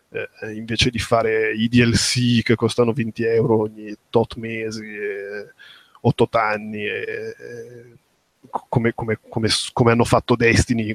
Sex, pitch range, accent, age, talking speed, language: male, 110-125 Hz, native, 20-39, 135 wpm, Italian